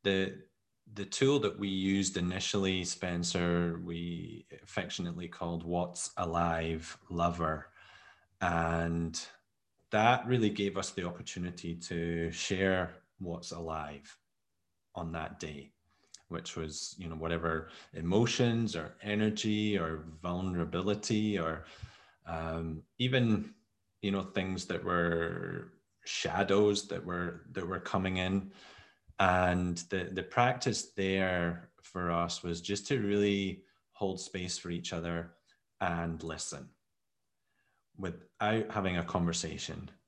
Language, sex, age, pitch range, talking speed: English, male, 20-39, 85-100 Hz, 110 wpm